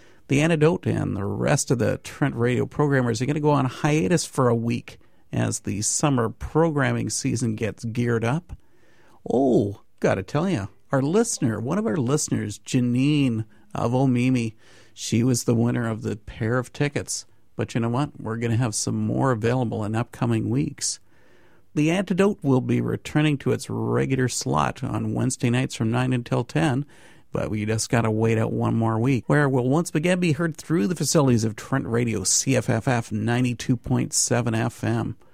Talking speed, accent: 180 wpm, American